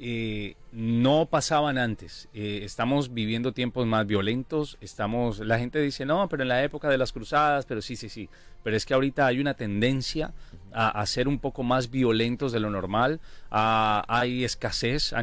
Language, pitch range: English, 110-140 Hz